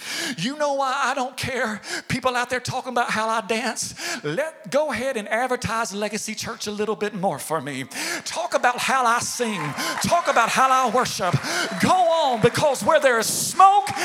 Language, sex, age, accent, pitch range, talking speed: English, male, 40-59, American, 235-315 Hz, 190 wpm